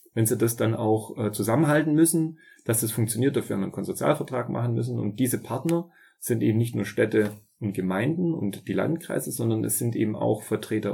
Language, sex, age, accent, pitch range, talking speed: German, male, 30-49, German, 105-125 Hz, 185 wpm